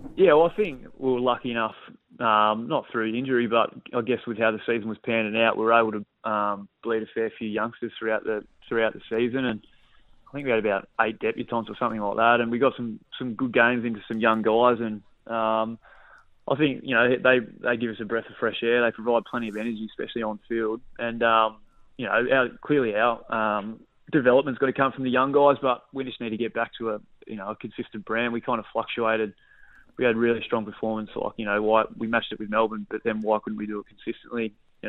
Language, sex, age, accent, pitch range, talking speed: English, male, 20-39, Australian, 110-120 Hz, 240 wpm